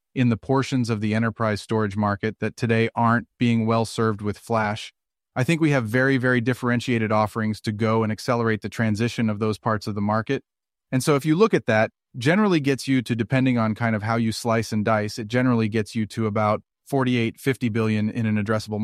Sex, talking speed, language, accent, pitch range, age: male, 215 wpm, English, American, 110-125 Hz, 30-49